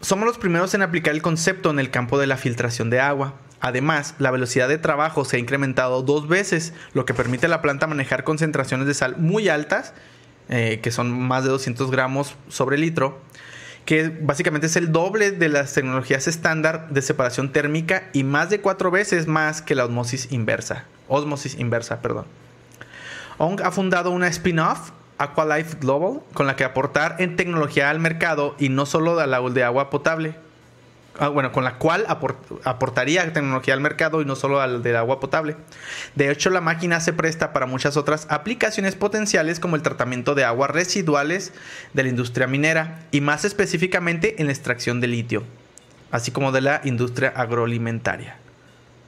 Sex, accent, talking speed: male, Mexican, 175 wpm